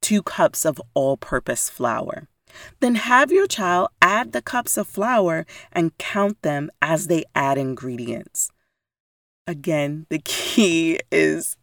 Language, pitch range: English, 155-200 Hz